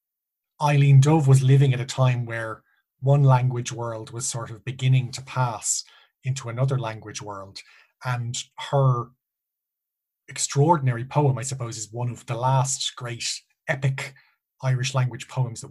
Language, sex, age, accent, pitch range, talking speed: English, male, 20-39, Irish, 120-140 Hz, 145 wpm